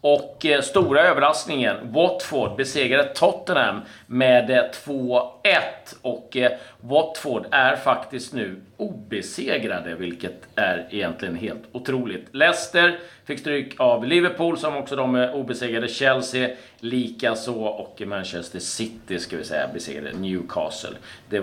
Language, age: Swedish, 40-59